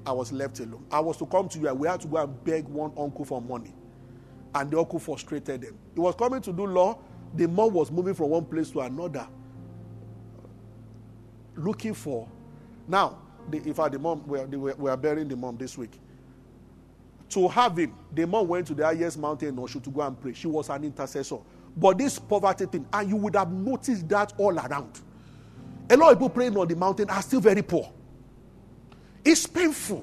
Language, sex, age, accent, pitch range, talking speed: English, male, 40-59, Nigerian, 145-225 Hz, 205 wpm